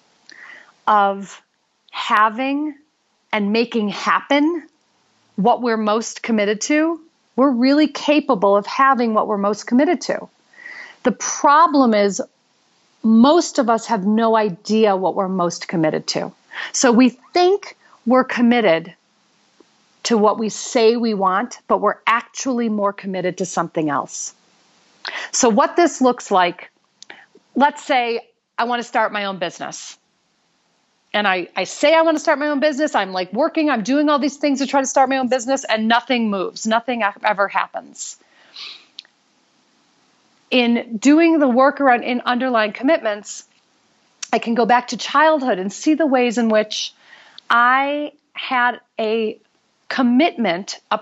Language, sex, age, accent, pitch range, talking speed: English, female, 40-59, American, 210-285 Hz, 145 wpm